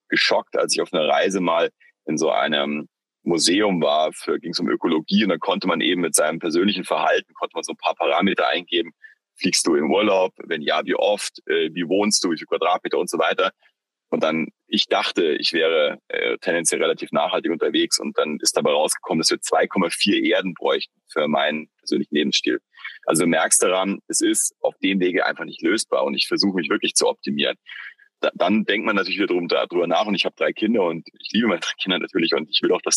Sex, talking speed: male, 210 wpm